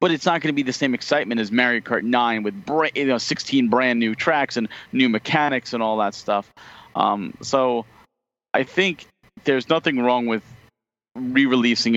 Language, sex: English, male